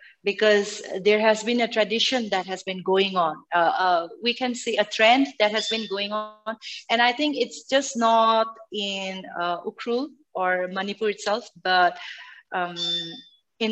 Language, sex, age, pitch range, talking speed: English, female, 30-49, 185-230 Hz, 165 wpm